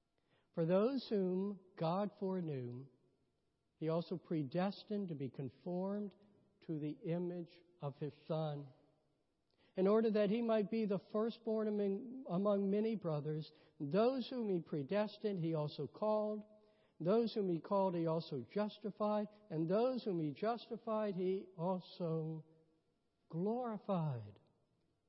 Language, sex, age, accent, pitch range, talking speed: English, male, 60-79, American, 160-215 Hz, 120 wpm